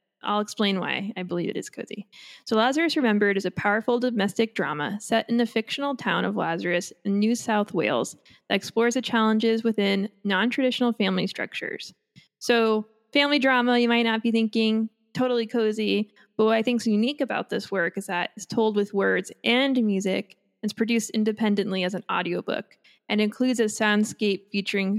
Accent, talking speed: American, 175 wpm